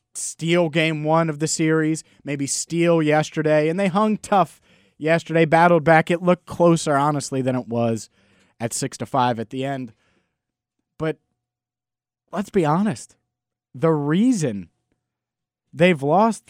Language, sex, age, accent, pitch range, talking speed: English, male, 30-49, American, 135-195 Hz, 140 wpm